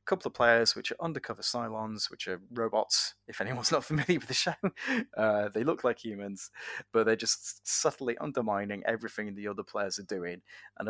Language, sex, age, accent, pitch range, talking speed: English, male, 20-39, British, 100-130 Hz, 185 wpm